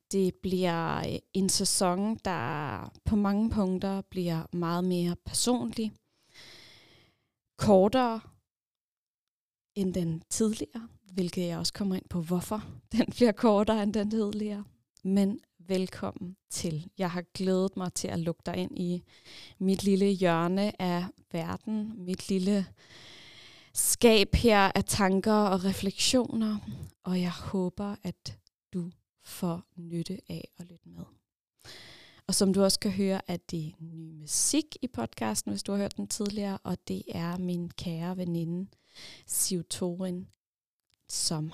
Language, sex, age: Danish, female, 20-39